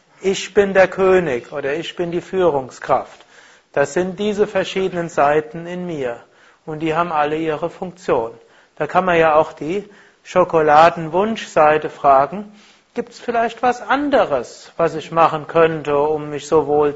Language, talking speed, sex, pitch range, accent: German, 150 wpm, male, 155-190 Hz, German